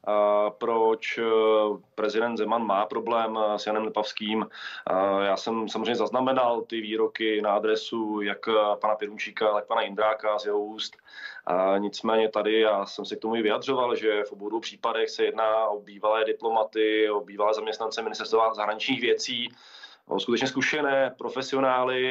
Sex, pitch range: male, 110-125 Hz